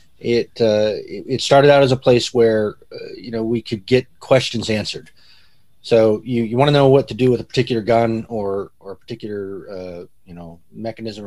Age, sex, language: 30-49, male, English